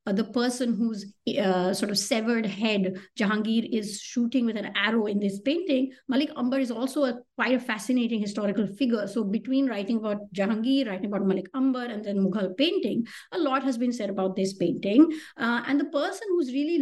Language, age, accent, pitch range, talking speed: English, 50-69, Indian, 210-265 Hz, 190 wpm